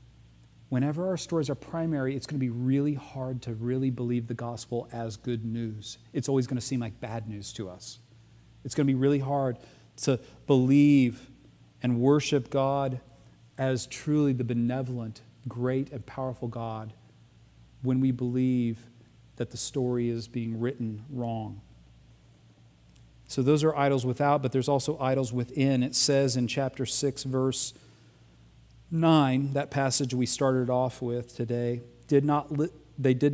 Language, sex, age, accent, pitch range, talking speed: English, male, 40-59, American, 115-135 Hz, 155 wpm